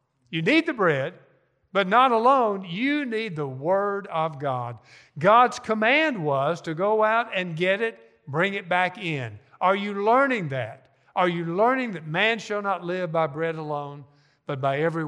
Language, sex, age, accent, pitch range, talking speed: English, male, 50-69, American, 150-205 Hz, 175 wpm